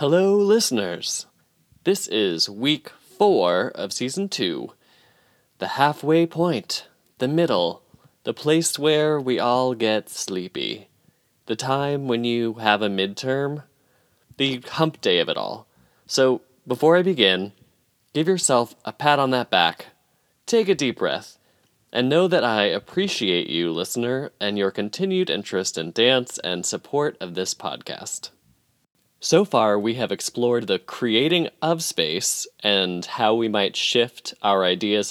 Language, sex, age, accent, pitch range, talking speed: English, male, 20-39, American, 95-140 Hz, 140 wpm